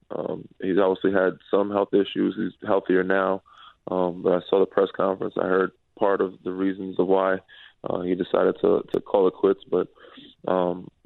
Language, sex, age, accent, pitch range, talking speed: English, male, 20-39, American, 95-100 Hz, 190 wpm